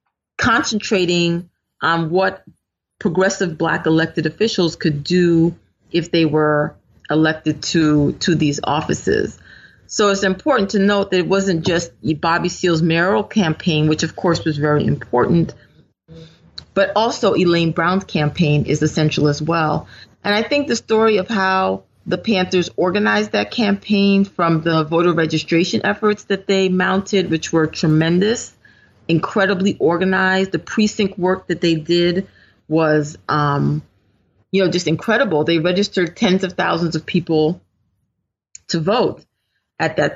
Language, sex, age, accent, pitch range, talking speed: English, female, 30-49, American, 155-195 Hz, 140 wpm